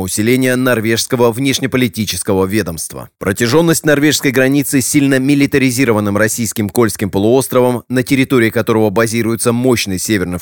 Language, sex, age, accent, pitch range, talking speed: Russian, male, 30-49, native, 105-130 Hz, 110 wpm